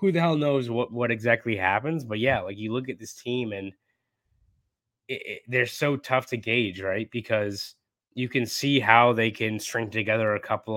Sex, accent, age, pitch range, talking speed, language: male, American, 20-39, 110-130 Hz, 200 wpm, English